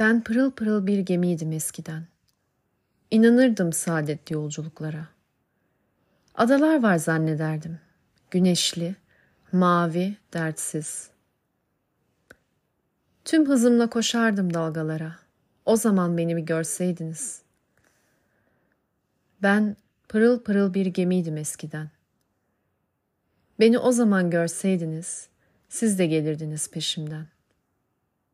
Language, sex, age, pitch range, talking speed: Turkish, female, 30-49, 165-210 Hz, 80 wpm